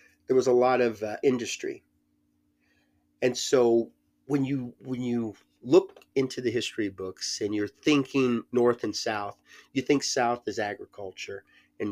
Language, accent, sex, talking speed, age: English, American, male, 150 wpm, 30-49